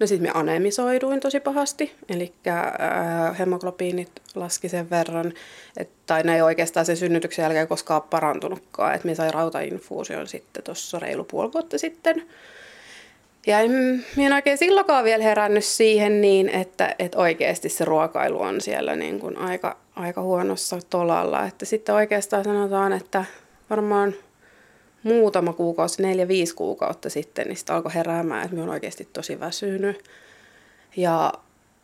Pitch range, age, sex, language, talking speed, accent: 170-220 Hz, 30-49, female, Finnish, 140 wpm, native